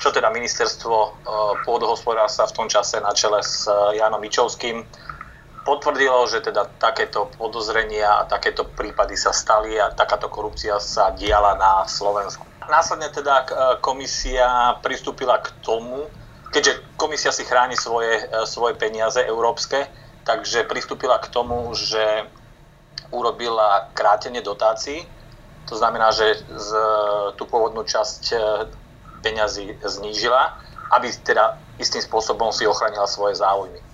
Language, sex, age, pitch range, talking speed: Slovak, male, 30-49, 105-125 Hz, 125 wpm